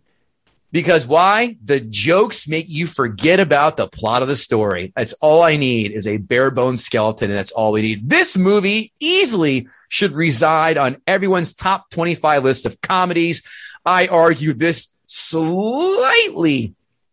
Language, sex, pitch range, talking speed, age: English, male, 120-170 Hz, 145 wpm, 30-49